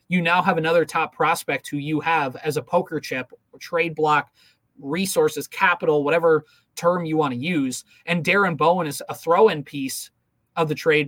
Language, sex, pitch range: English, male, 150-185 Hz